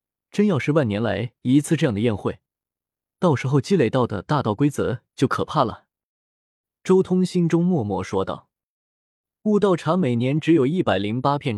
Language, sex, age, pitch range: Chinese, male, 20-39, 115-170 Hz